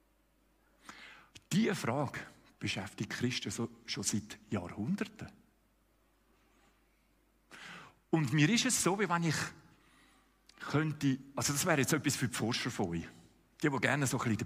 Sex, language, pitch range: male, German, 135-205 Hz